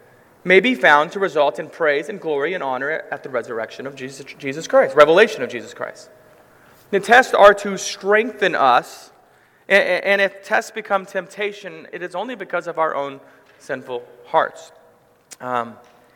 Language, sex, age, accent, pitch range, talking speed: English, male, 30-49, American, 155-200 Hz, 165 wpm